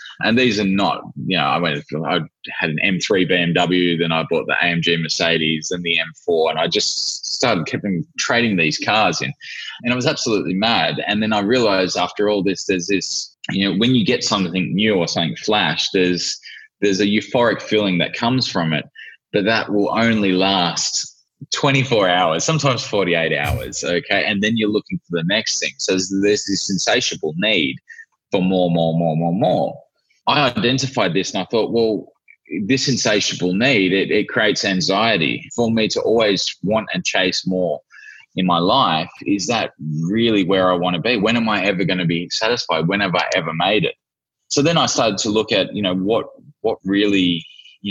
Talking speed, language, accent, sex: 195 wpm, English, Australian, male